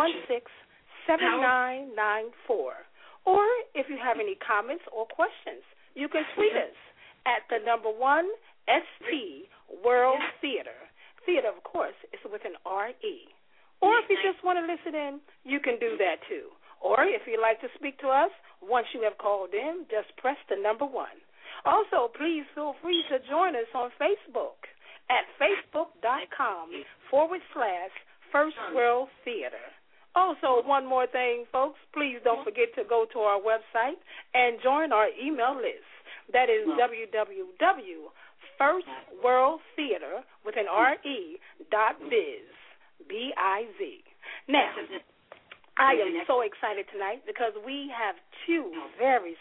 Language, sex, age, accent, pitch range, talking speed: English, female, 40-59, American, 240-365 Hz, 145 wpm